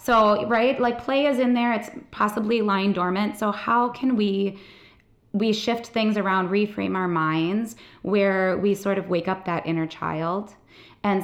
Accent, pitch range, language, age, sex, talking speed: American, 180-215 Hz, English, 20-39, female, 170 wpm